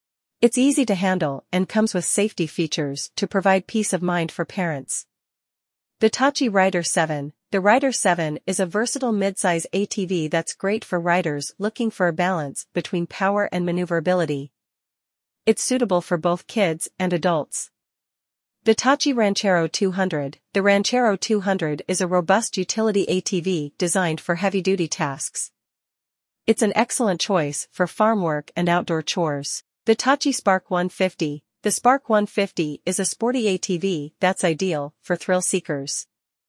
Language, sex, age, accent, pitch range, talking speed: English, female, 40-59, American, 165-205 Hz, 145 wpm